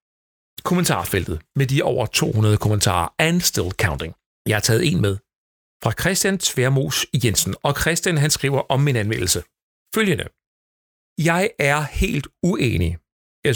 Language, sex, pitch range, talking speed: Danish, male, 115-155 Hz, 135 wpm